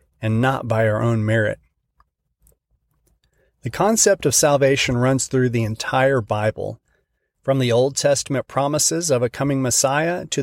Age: 40-59